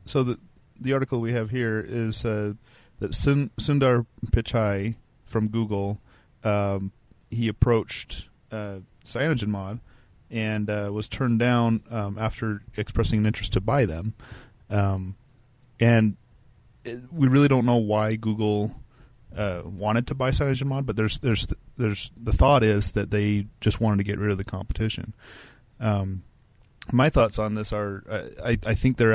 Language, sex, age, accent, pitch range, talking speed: English, male, 30-49, American, 100-115 Hz, 150 wpm